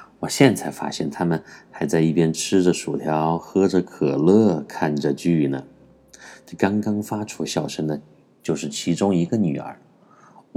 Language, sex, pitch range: Chinese, male, 80-125 Hz